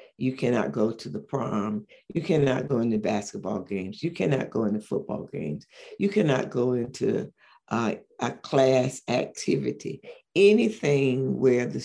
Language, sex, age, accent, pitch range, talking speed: English, female, 60-79, American, 125-150 Hz, 145 wpm